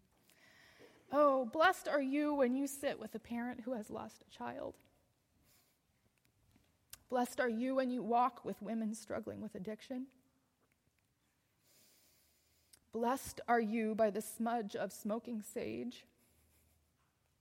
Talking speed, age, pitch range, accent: 120 wpm, 20-39, 165-240 Hz, American